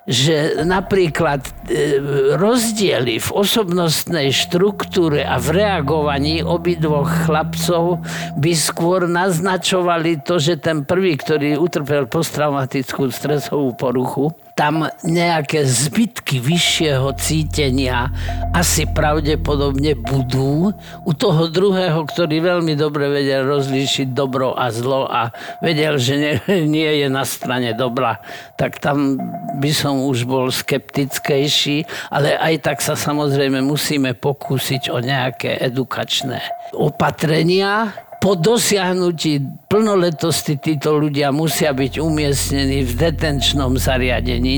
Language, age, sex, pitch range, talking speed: Slovak, 50-69, male, 135-175 Hz, 110 wpm